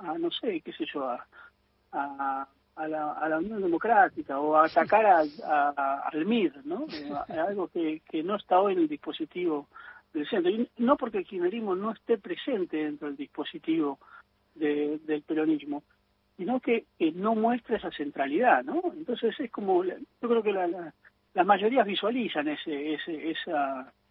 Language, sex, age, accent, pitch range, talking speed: Spanish, male, 40-59, Argentinian, 150-250 Hz, 175 wpm